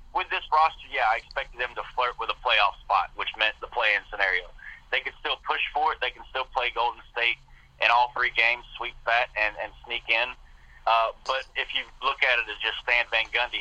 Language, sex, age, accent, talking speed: English, male, 40-59, American, 230 wpm